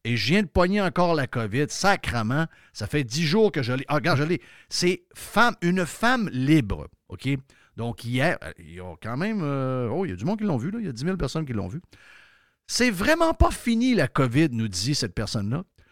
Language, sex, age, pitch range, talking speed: French, male, 50-69, 125-185 Hz, 240 wpm